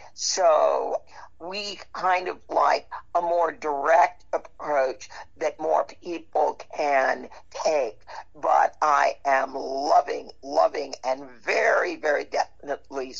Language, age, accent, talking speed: English, 50-69, American, 105 wpm